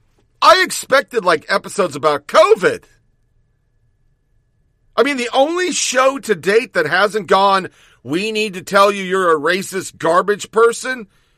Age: 50-69